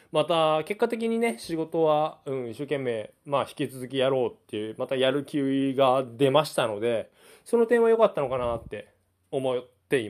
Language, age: Japanese, 20-39